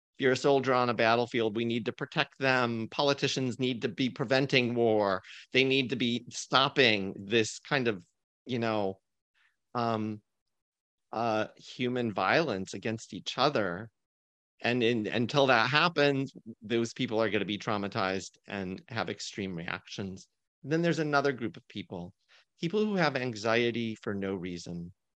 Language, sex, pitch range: English, male, 110-140 Hz